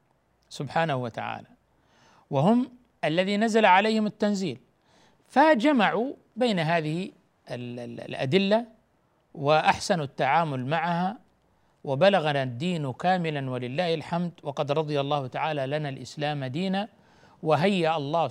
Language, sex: Arabic, male